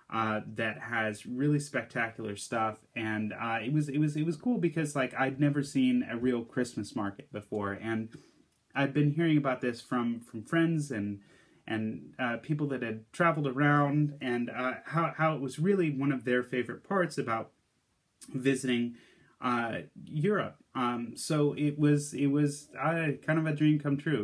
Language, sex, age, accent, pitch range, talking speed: English, male, 30-49, American, 110-140 Hz, 175 wpm